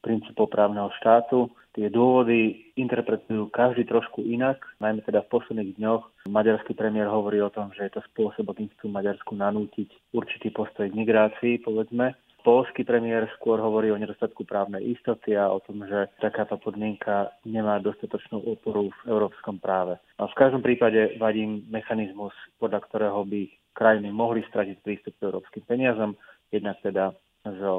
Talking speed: 145 wpm